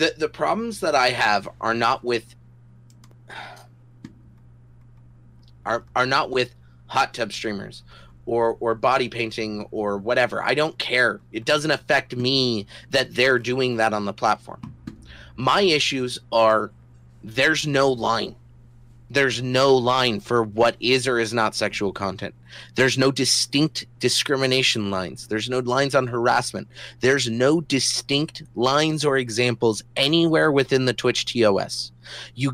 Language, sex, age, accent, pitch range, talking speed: English, male, 30-49, American, 115-140 Hz, 140 wpm